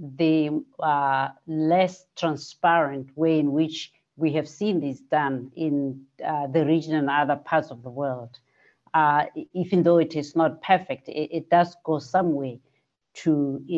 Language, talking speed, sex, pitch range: English, 155 wpm, female, 145-185 Hz